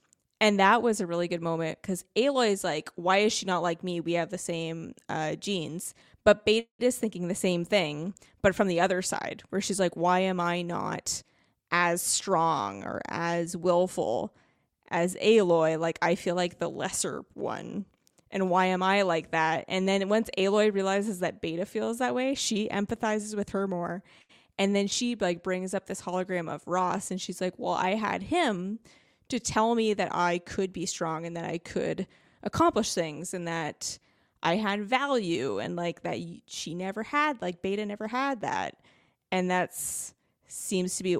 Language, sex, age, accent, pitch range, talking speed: English, female, 20-39, American, 175-215 Hz, 190 wpm